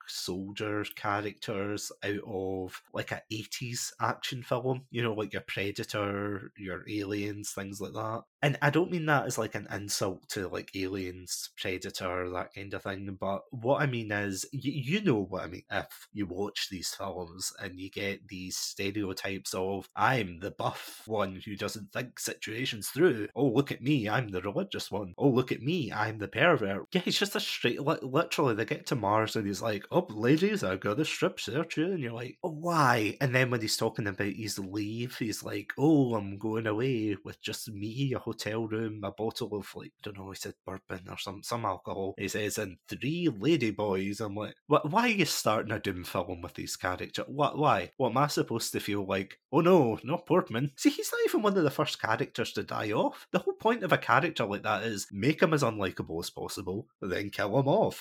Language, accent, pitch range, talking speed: English, British, 100-140 Hz, 210 wpm